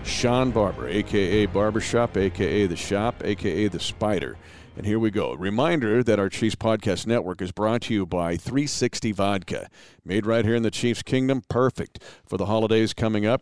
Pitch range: 105-130 Hz